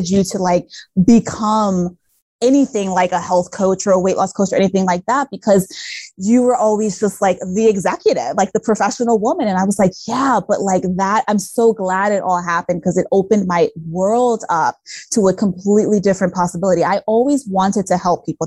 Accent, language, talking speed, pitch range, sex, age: American, English, 200 wpm, 180-220 Hz, female, 20-39